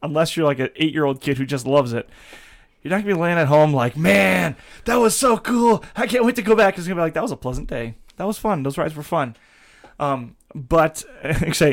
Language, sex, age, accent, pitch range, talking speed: English, male, 20-39, American, 130-165 Hz, 245 wpm